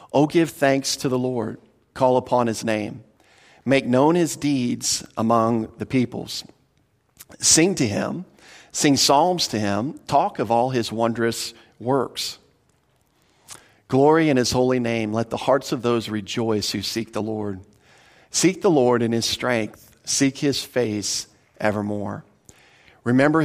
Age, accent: 50-69, American